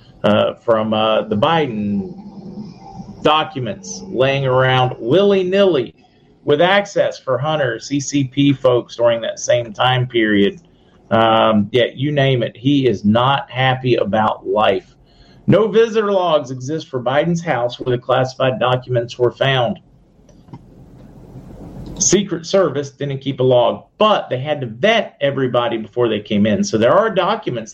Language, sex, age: English, male, 40-59